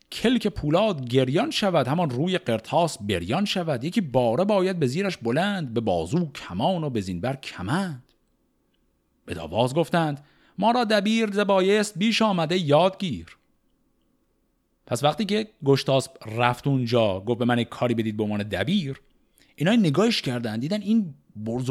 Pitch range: 120-190 Hz